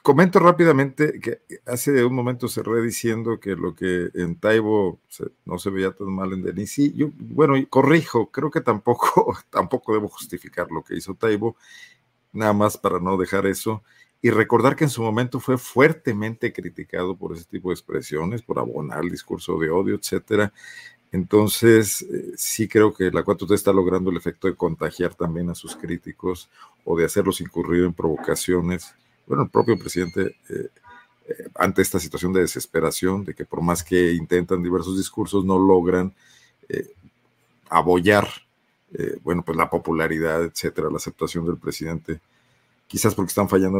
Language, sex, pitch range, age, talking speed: Spanish, male, 90-120 Hz, 50-69, 165 wpm